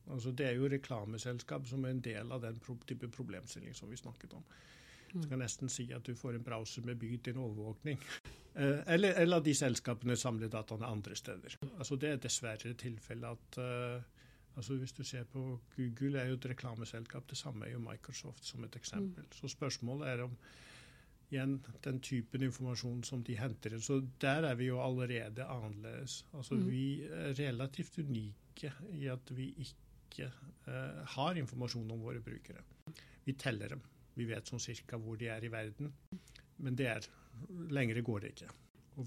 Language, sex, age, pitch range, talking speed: English, male, 60-79, 115-135 Hz, 195 wpm